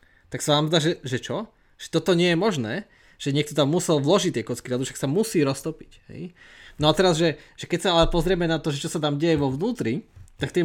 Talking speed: 255 wpm